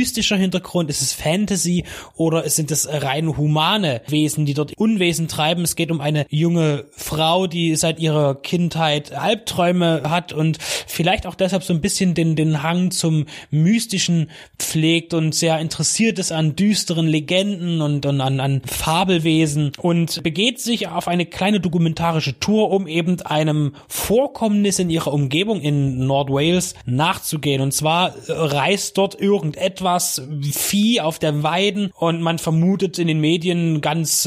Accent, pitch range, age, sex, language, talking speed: German, 150-180 Hz, 20-39, male, German, 150 wpm